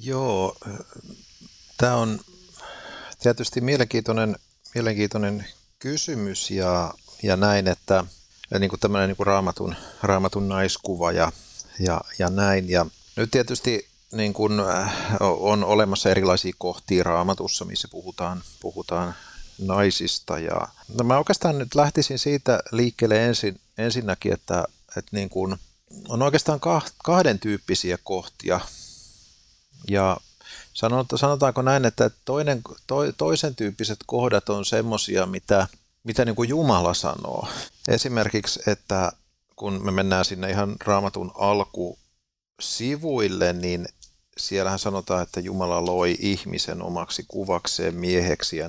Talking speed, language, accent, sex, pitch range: 115 wpm, Finnish, native, male, 95-120 Hz